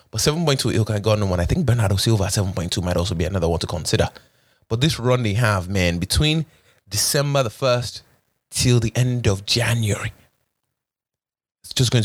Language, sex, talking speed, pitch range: English, male, 185 wpm, 100-130 Hz